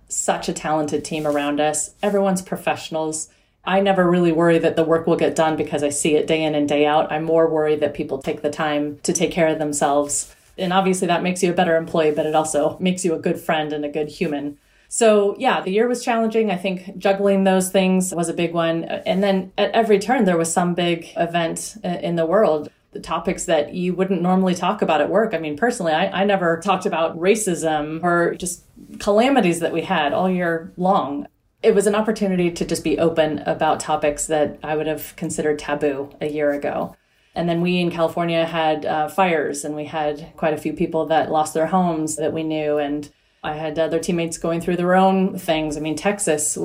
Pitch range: 155-185 Hz